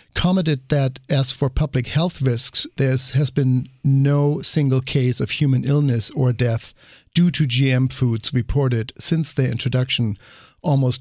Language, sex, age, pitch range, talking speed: English, male, 50-69, 120-140 Hz, 145 wpm